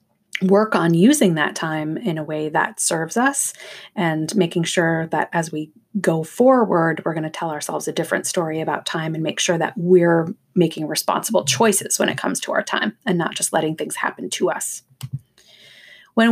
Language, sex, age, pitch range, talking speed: English, female, 30-49, 165-205 Hz, 190 wpm